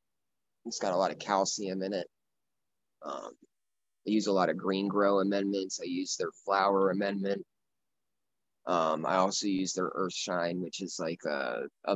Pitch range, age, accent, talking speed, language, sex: 90-100 Hz, 20-39, American, 170 wpm, English, male